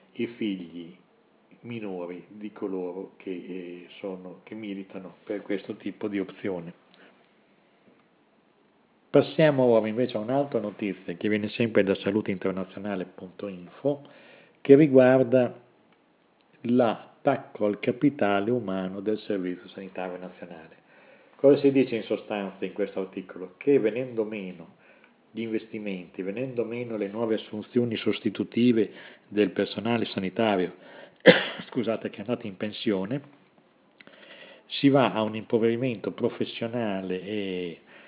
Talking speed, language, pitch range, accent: 110 wpm, Italian, 95-115 Hz, native